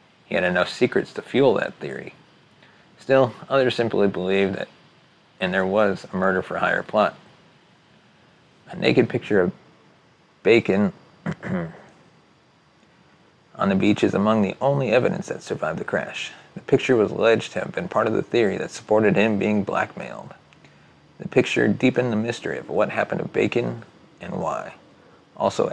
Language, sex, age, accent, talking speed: English, male, 30-49, American, 150 wpm